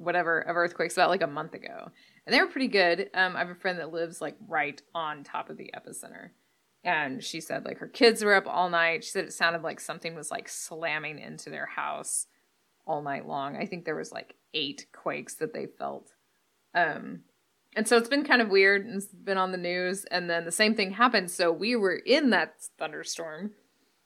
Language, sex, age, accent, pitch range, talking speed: English, female, 20-39, American, 170-215 Hz, 215 wpm